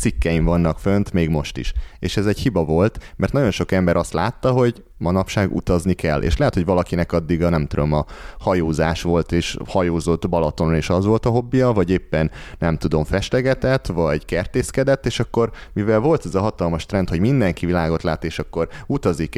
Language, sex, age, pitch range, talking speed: Hungarian, male, 30-49, 80-100 Hz, 190 wpm